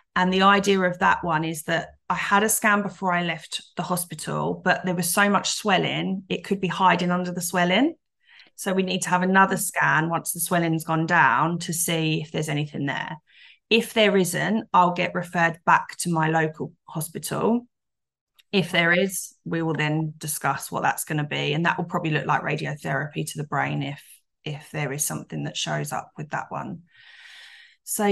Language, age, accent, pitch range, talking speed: English, 20-39, British, 160-200 Hz, 200 wpm